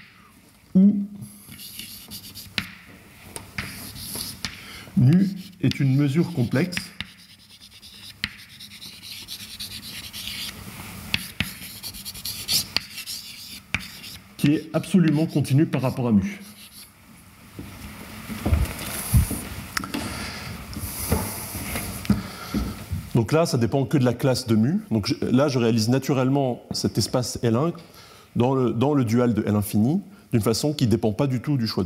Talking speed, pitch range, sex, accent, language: 90 wpm, 100-130 Hz, male, French, French